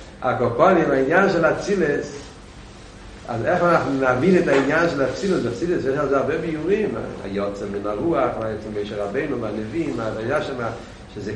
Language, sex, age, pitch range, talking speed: Hebrew, male, 60-79, 135-210 Hz, 135 wpm